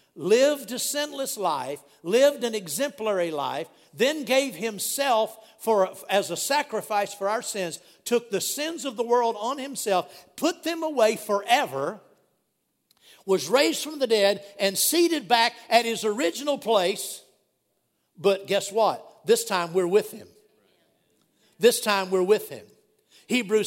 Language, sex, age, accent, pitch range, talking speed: English, male, 60-79, American, 195-255 Hz, 140 wpm